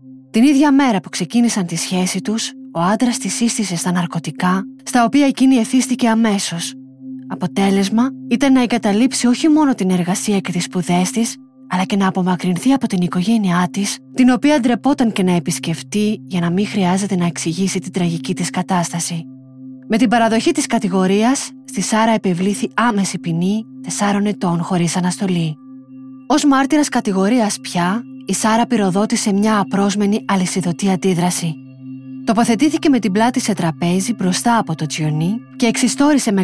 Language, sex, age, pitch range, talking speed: Greek, female, 20-39, 180-240 Hz, 155 wpm